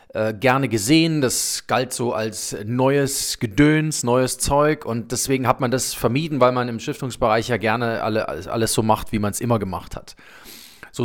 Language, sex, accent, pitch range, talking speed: German, male, German, 125-155 Hz, 180 wpm